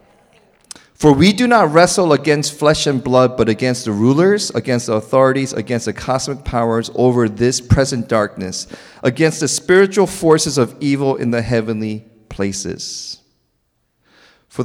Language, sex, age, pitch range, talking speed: English, male, 40-59, 100-135 Hz, 145 wpm